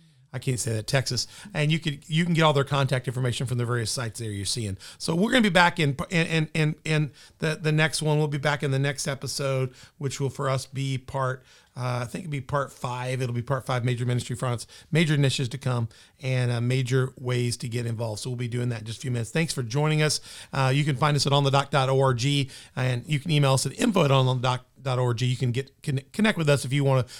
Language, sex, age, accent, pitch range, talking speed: English, male, 40-59, American, 125-150 Hz, 240 wpm